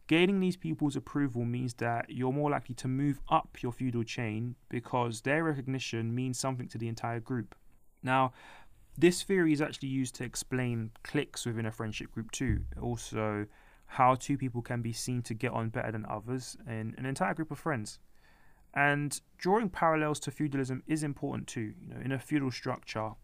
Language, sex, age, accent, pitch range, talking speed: English, male, 20-39, British, 115-140 Hz, 185 wpm